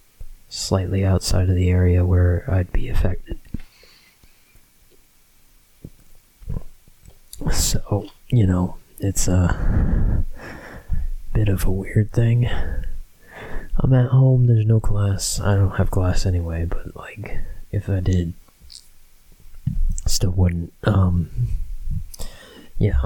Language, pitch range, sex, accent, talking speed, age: English, 90-105 Hz, male, American, 105 wpm, 20-39